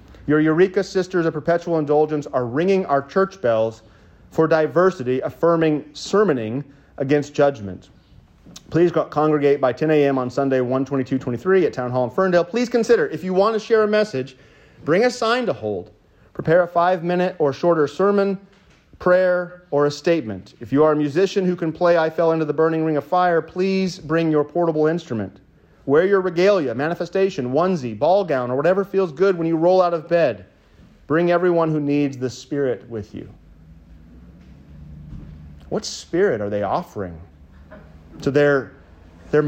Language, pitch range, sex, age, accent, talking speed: English, 110-180 Hz, male, 30-49, American, 165 wpm